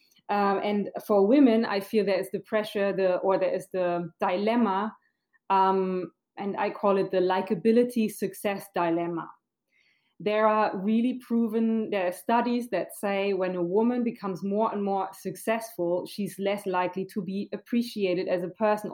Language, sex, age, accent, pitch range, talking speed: Turkish, female, 20-39, German, 185-215 Hz, 160 wpm